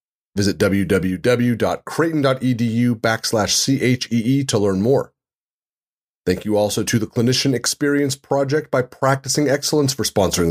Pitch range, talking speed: 115-145 Hz, 115 wpm